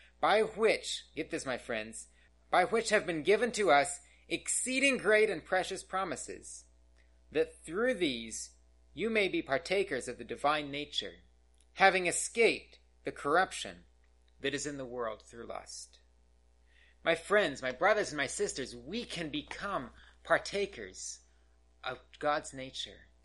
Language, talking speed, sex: English, 140 wpm, male